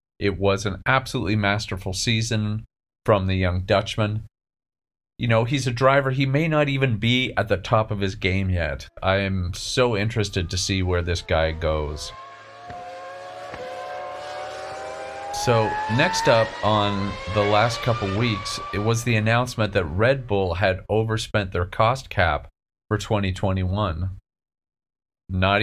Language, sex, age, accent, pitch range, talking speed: English, male, 40-59, American, 95-120 Hz, 140 wpm